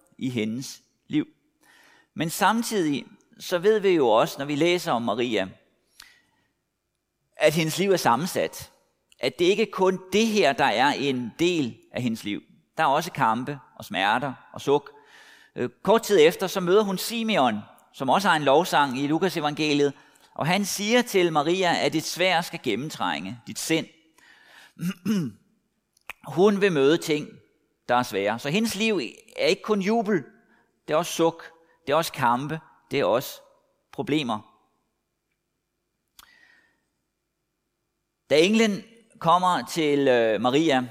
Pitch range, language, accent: 130-190 Hz, Danish, native